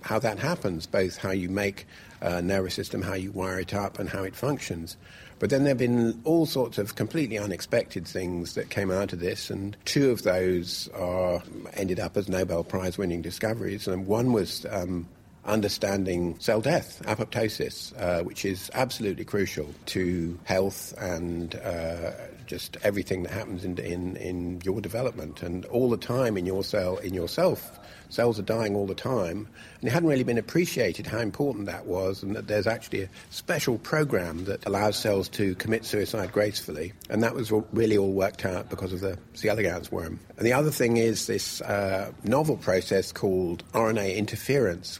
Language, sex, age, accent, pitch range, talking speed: English, male, 50-69, British, 90-110 Hz, 180 wpm